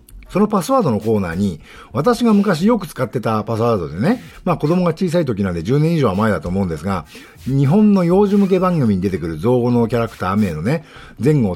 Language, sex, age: Japanese, male, 50-69